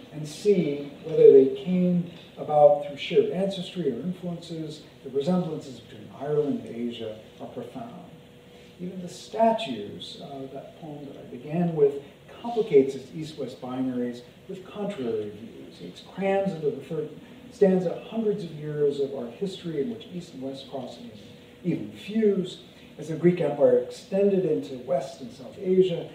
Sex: male